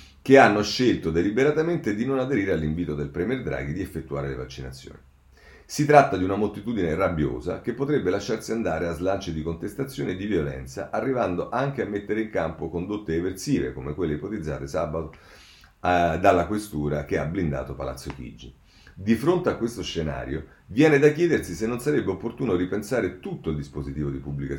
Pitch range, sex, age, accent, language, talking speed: 75-115 Hz, male, 40-59, native, Italian, 170 wpm